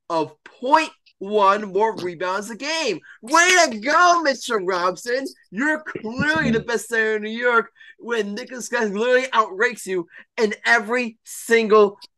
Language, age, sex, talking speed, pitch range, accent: English, 20-39, male, 140 wpm, 155-230 Hz, American